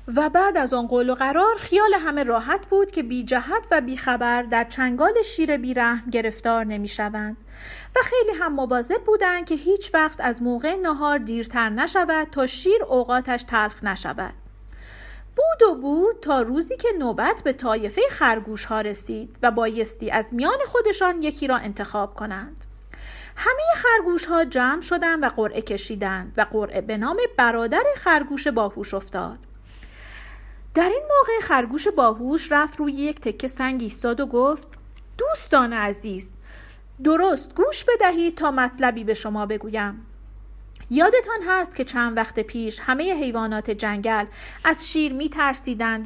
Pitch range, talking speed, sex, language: 230-325 Hz, 145 wpm, female, Persian